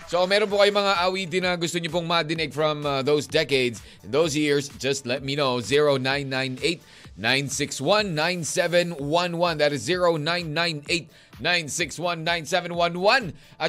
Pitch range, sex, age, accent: 145-200 Hz, male, 20-39, native